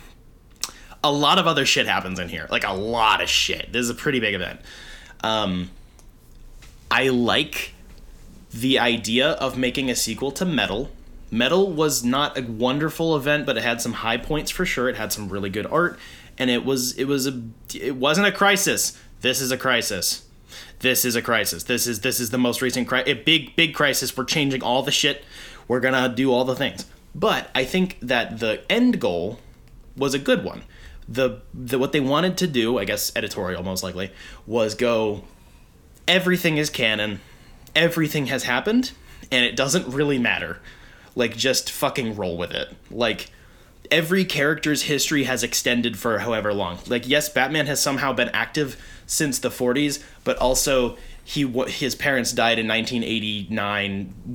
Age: 20-39